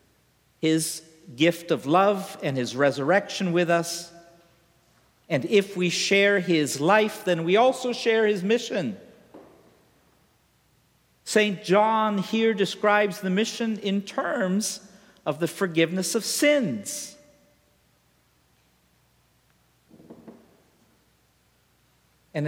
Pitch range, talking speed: 150-210 Hz, 95 wpm